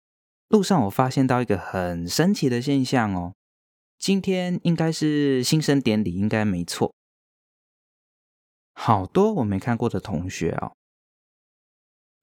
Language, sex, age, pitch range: Chinese, male, 20-39, 95-145 Hz